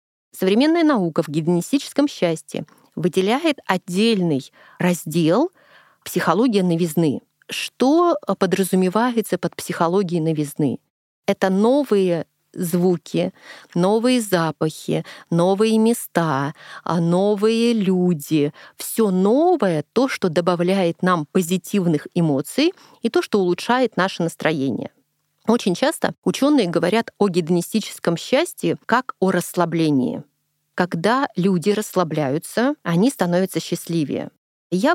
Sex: female